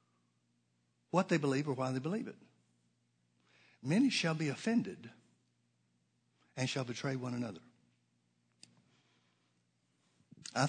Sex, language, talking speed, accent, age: male, English, 100 wpm, American, 60-79